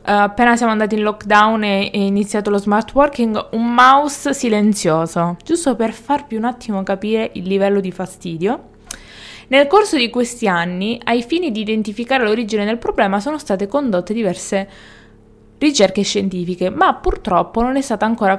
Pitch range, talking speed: 190-245 Hz, 155 wpm